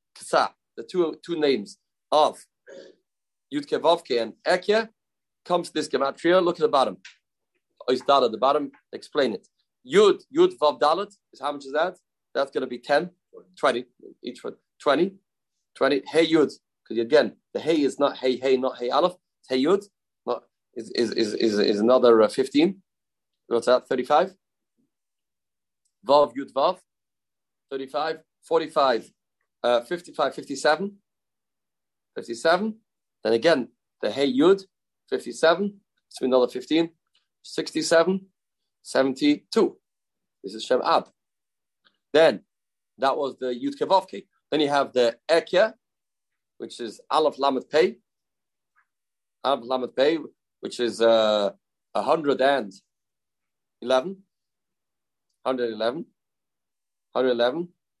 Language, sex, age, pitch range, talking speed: English, male, 30-49, 130-180 Hz, 125 wpm